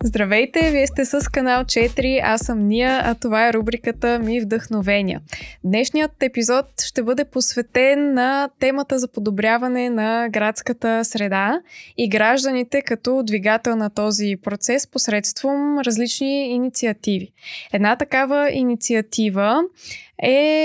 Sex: female